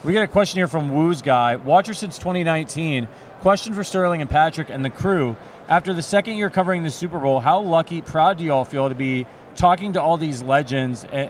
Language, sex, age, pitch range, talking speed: English, male, 30-49, 135-170 Hz, 225 wpm